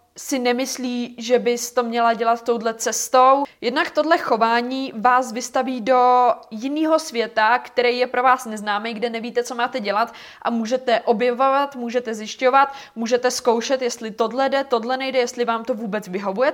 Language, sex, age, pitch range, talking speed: Czech, female, 20-39, 210-245 Hz, 160 wpm